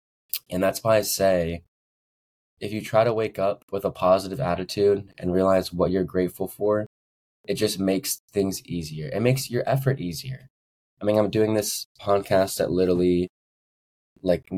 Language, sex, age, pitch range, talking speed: English, male, 20-39, 90-105 Hz, 165 wpm